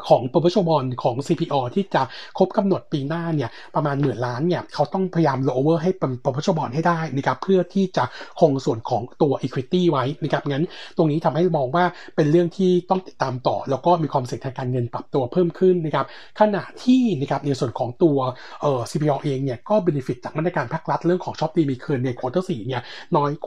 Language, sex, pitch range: Thai, male, 135-175 Hz